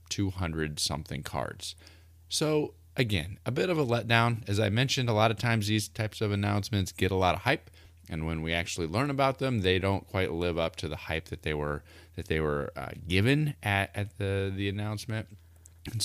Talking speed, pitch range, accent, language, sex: 205 wpm, 85-105 Hz, American, English, male